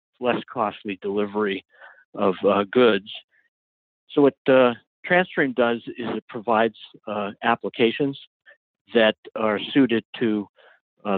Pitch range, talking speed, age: 105-125 Hz, 115 wpm, 60-79